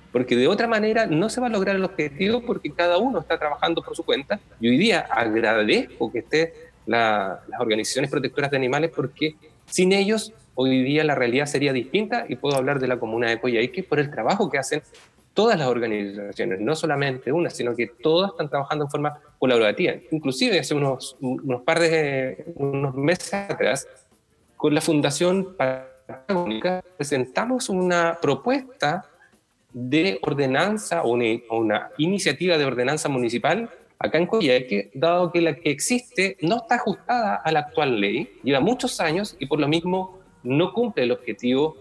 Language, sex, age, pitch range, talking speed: Spanish, male, 30-49, 130-185 Hz, 170 wpm